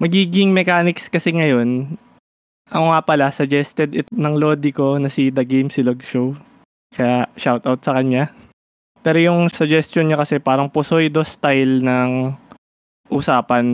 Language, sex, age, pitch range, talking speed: Filipino, male, 20-39, 130-160 Hz, 140 wpm